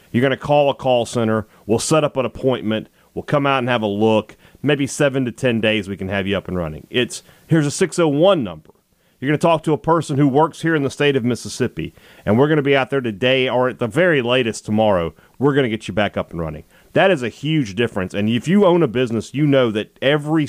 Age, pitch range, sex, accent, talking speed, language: 40-59, 110-145 Hz, male, American, 260 wpm, English